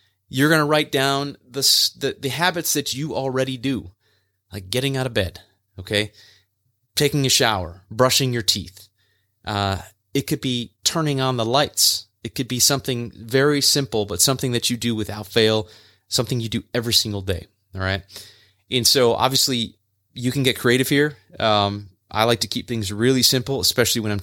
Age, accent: 30-49, American